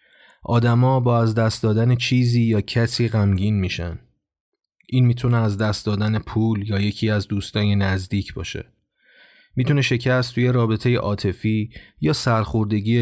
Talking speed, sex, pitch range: 135 wpm, male, 100-120 Hz